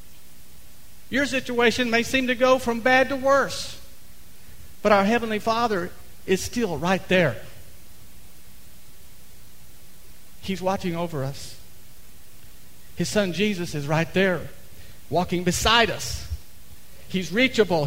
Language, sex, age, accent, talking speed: English, male, 50-69, American, 110 wpm